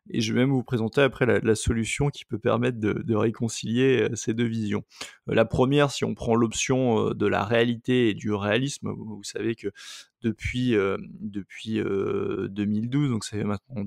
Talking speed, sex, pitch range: 175 wpm, male, 110-130 Hz